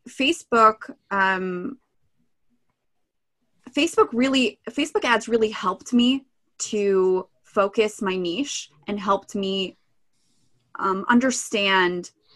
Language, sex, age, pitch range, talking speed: English, female, 20-39, 180-220 Hz, 85 wpm